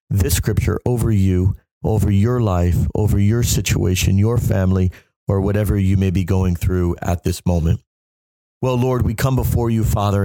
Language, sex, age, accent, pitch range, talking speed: English, male, 40-59, American, 95-115 Hz, 170 wpm